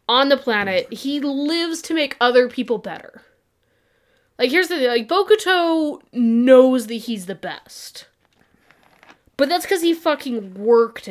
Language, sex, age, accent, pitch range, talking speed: English, female, 20-39, American, 205-270 Hz, 145 wpm